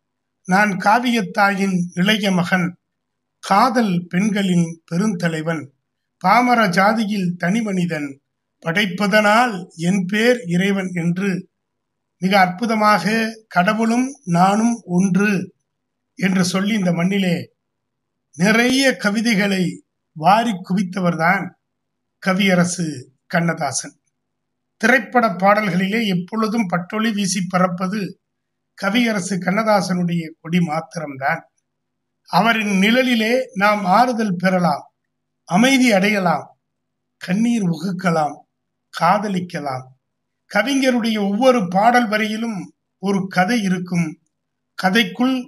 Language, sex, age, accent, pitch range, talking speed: Tamil, male, 60-79, native, 170-215 Hz, 80 wpm